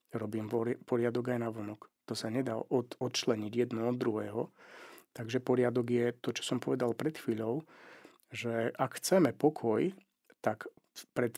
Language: Slovak